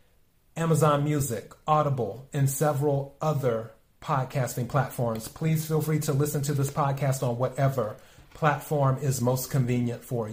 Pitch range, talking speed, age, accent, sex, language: 130-155 Hz, 135 wpm, 30-49, American, male, English